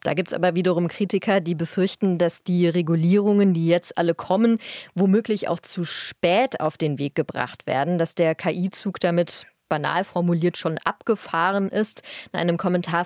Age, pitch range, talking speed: 20-39, 165-195 Hz, 165 wpm